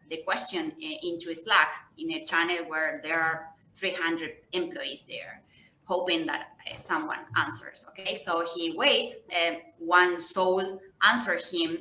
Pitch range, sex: 165-205 Hz, female